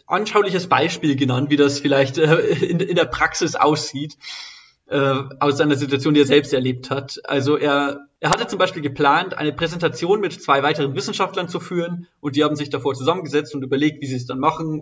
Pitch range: 140-165 Hz